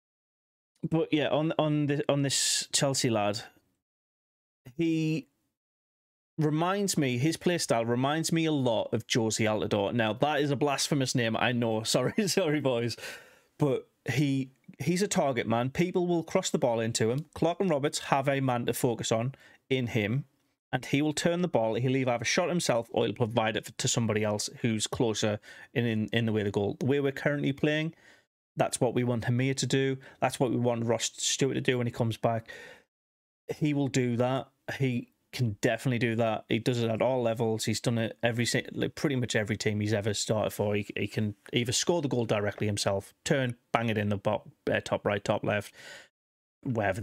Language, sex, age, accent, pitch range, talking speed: English, male, 30-49, British, 110-145 Hz, 195 wpm